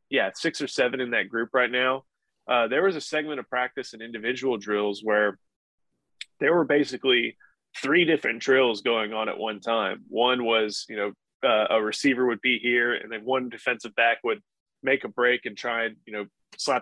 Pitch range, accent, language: 115-130 Hz, American, English